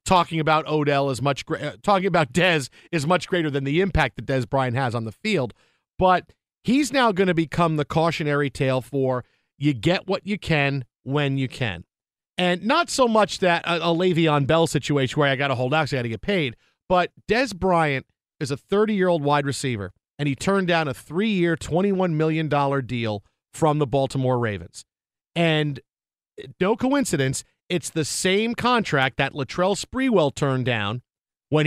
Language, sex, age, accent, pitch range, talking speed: English, male, 40-59, American, 135-190 Hz, 185 wpm